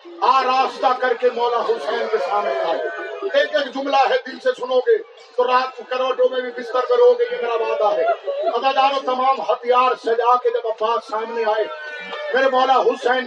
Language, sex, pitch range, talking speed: Urdu, male, 240-310 Hz, 120 wpm